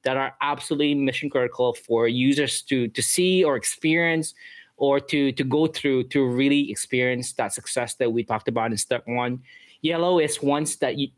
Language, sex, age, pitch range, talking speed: English, male, 20-39, 130-160 Hz, 175 wpm